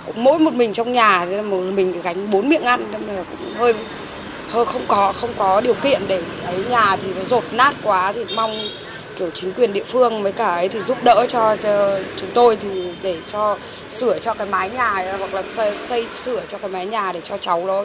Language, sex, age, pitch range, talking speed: Vietnamese, female, 20-39, 190-235 Hz, 230 wpm